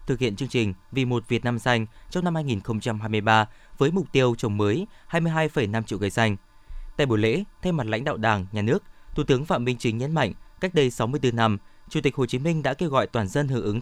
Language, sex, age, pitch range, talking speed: Vietnamese, male, 20-39, 115-150 Hz, 235 wpm